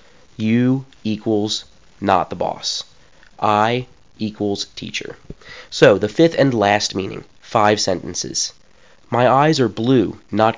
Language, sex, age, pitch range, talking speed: English, male, 30-49, 100-130 Hz, 120 wpm